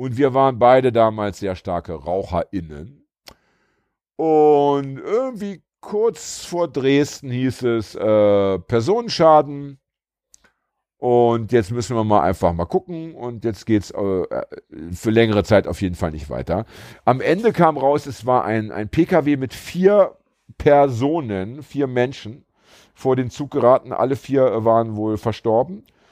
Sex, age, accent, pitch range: male, 50-69, German, 100-135 Hz